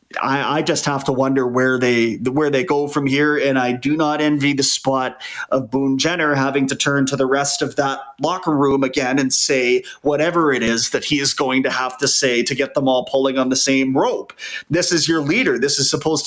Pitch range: 135-155 Hz